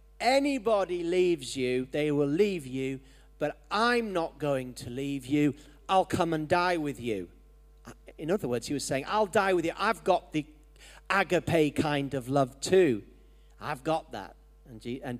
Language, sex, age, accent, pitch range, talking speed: English, male, 40-59, British, 120-170 Hz, 170 wpm